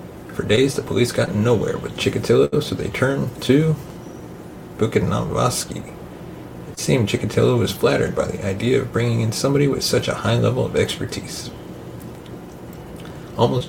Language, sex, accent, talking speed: English, male, American, 145 wpm